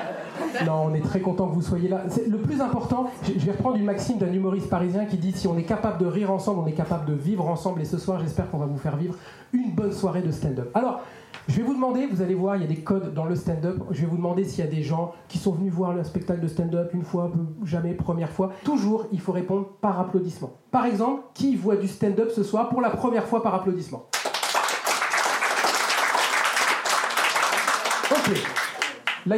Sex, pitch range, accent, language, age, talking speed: male, 175-225 Hz, French, French, 40-59, 230 wpm